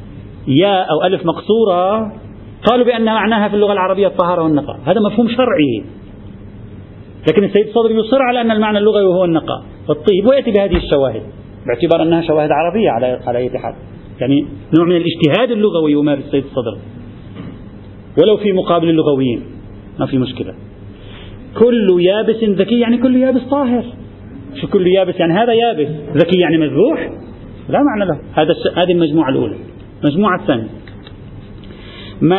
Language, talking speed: Arabic, 145 wpm